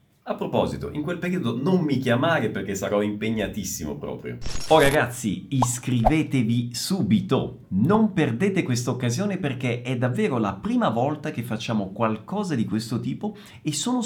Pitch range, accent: 110-180 Hz, native